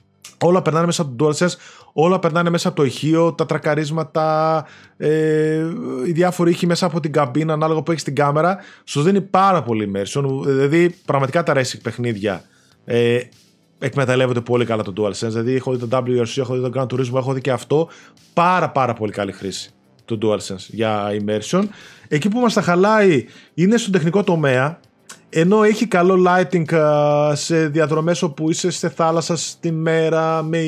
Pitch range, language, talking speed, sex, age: 140-180 Hz, Greek, 165 wpm, male, 20-39